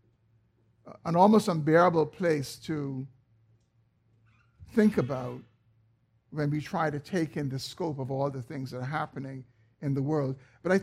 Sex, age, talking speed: male, 60-79, 150 wpm